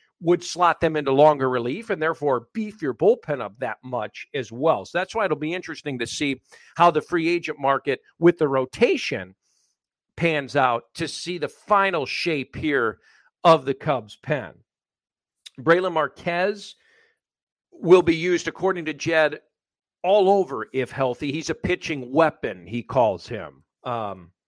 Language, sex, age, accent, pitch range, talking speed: English, male, 50-69, American, 140-180 Hz, 155 wpm